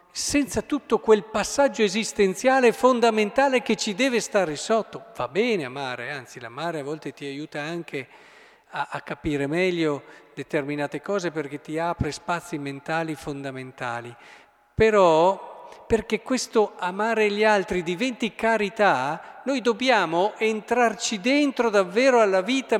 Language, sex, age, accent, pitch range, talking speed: Italian, male, 50-69, native, 145-220 Hz, 125 wpm